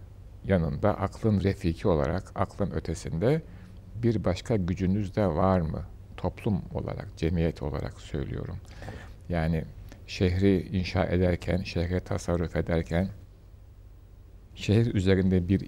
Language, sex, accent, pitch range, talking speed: Turkish, male, native, 85-100 Hz, 105 wpm